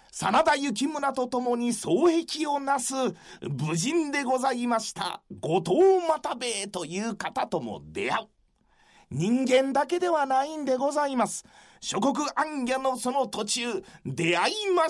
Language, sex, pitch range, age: Japanese, male, 215-295 Hz, 40-59